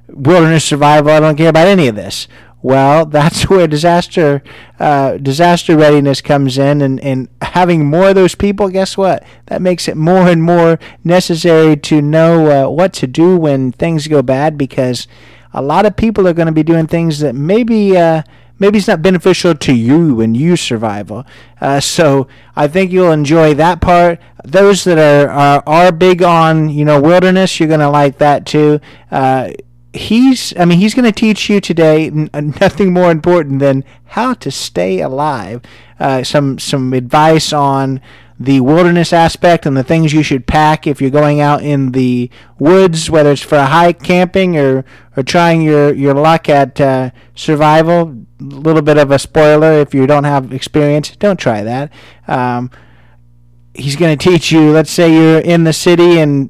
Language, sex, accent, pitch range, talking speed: English, male, American, 140-175 Hz, 185 wpm